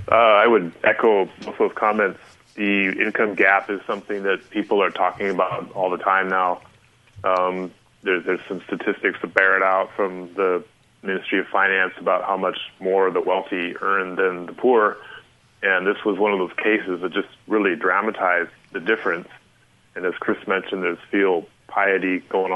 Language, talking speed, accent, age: English, 175 wpm, American, 20-39